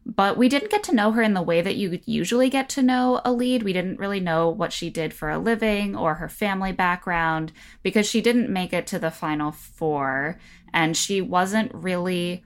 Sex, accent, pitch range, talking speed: female, American, 155-215 Hz, 220 wpm